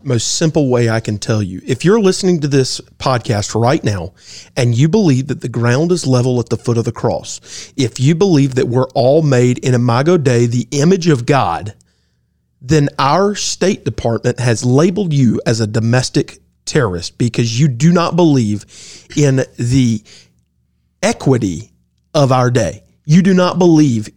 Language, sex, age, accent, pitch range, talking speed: English, male, 40-59, American, 120-160 Hz, 170 wpm